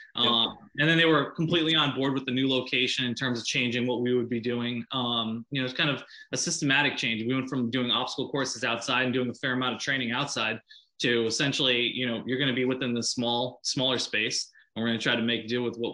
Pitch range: 120-140 Hz